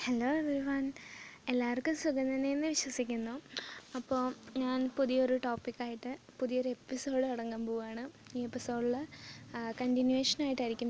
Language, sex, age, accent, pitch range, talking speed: Malayalam, female, 20-39, native, 225-265 Hz, 85 wpm